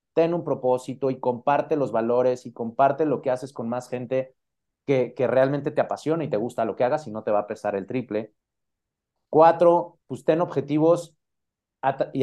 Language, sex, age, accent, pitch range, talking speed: Spanish, male, 30-49, Mexican, 120-145 Hz, 190 wpm